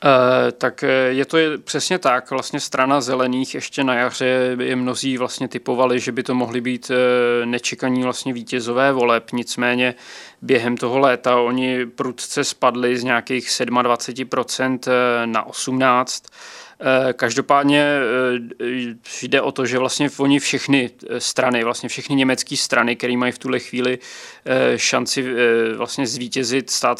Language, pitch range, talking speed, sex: Czech, 120-130 Hz, 130 wpm, male